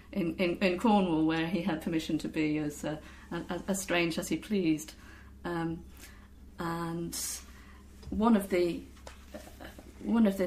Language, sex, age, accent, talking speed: English, female, 30-49, British, 150 wpm